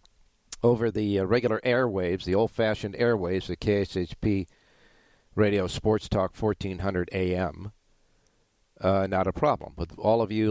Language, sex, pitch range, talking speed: English, male, 90-110 Hz, 130 wpm